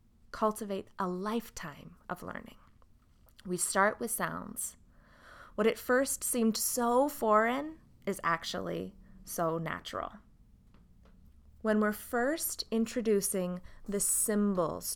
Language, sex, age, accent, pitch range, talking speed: English, female, 20-39, American, 175-215 Hz, 100 wpm